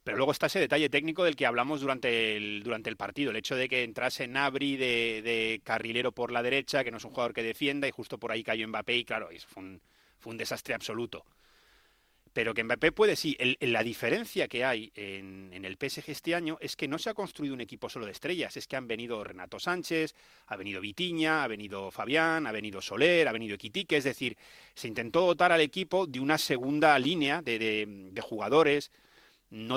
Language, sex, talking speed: Spanish, male, 210 wpm